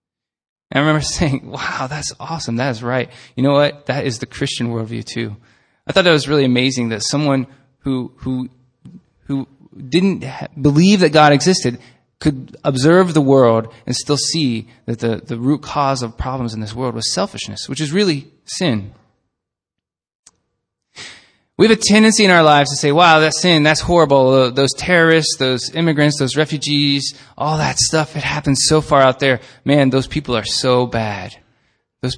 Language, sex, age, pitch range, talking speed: English, male, 20-39, 120-155 Hz, 175 wpm